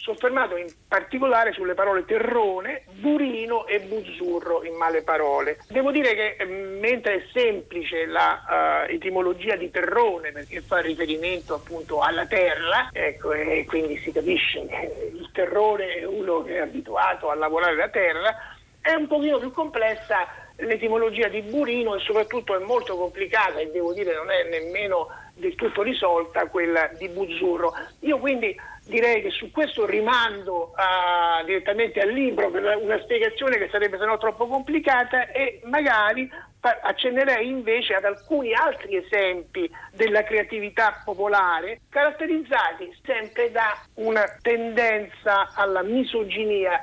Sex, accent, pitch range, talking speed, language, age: male, native, 190-275 Hz, 135 wpm, Italian, 50-69